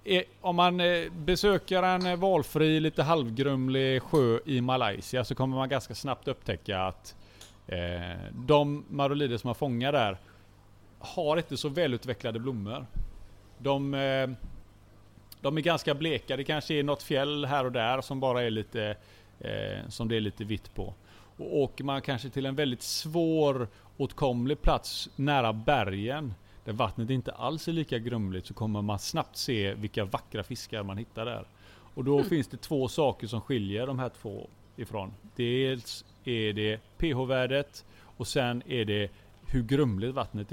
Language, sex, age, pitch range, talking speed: Swedish, male, 30-49, 105-140 Hz, 155 wpm